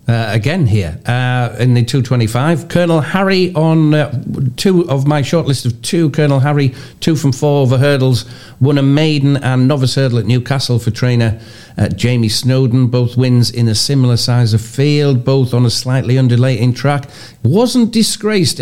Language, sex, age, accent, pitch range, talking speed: English, male, 50-69, British, 120-145 Hz, 175 wpm